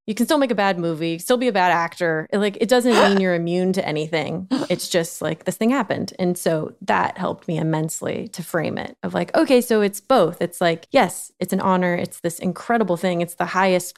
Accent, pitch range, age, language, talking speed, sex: American, 165-195 Hz, 20-39, English, 230 wpm, female